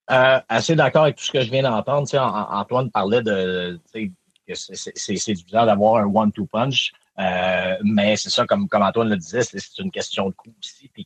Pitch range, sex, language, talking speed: 100-140 Hz, male, French, 235 wpm